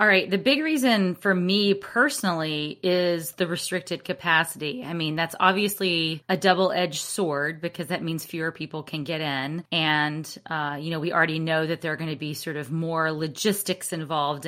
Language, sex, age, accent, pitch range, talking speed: English, female, 30-49, American, 155-190 Hz, 190 wpm